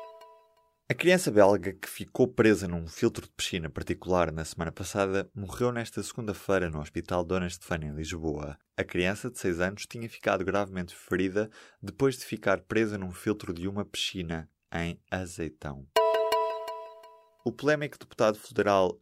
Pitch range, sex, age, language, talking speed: 90-115 Hz, male, 20-39, Portuguese, 150 wpm